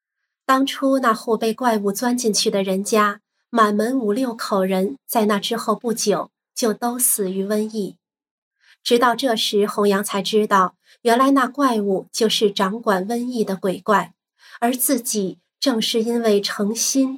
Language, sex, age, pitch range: Chinese, female, 20-39, 200-235 Hz